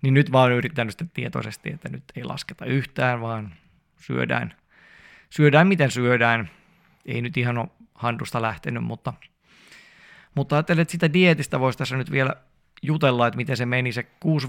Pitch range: 120-150 Hz